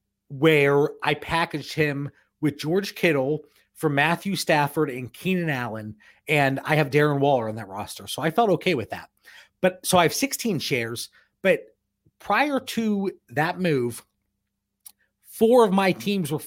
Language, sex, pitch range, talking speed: English, male, 140-180 Hz, 155 wpm